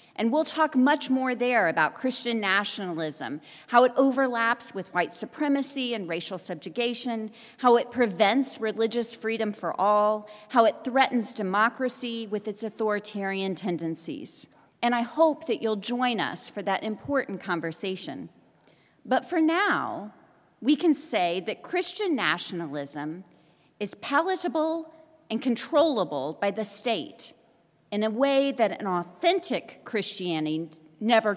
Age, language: 40-59, English